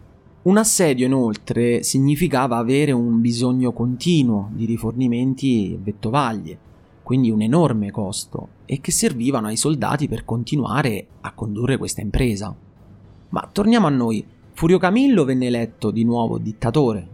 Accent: native